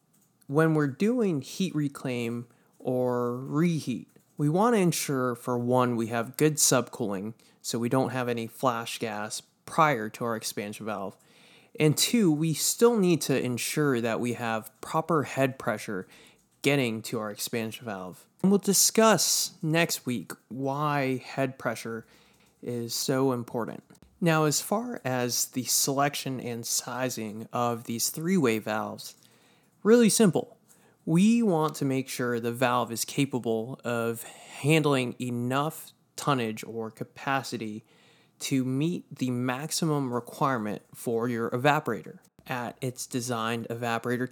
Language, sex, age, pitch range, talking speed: English, male, 20-39, 120-155 Hz, 135 wpm